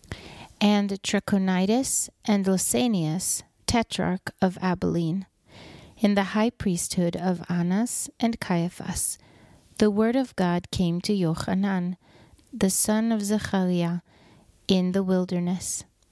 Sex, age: female, 30-49